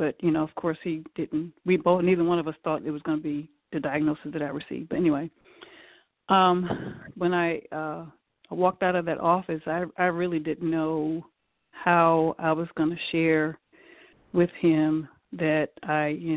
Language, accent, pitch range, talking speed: English, American, 155-175 Hz, 185 wpm